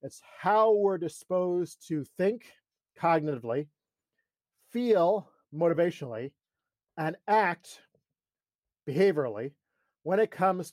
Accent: American